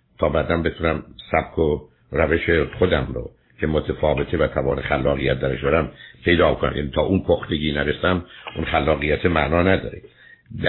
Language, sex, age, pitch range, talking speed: Persian, male, 60-79, 75-95 Hz, 135 wpm